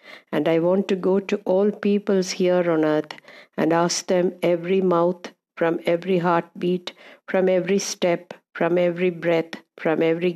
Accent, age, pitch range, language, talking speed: native, 60-79, 165-185 Hz, Malayalam, 160 wpm